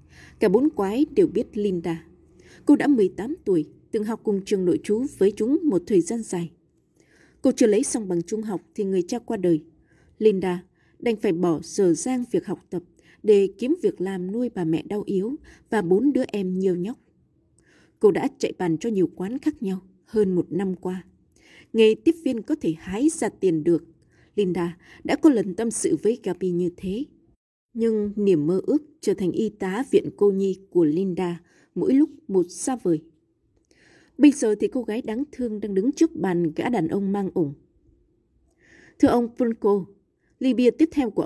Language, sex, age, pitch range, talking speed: Vietnamese, female, 20-39, 180-265 Hz, 190 wpm